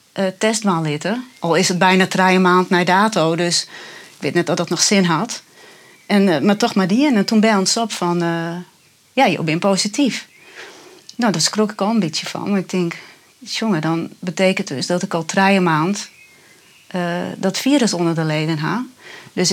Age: 30-49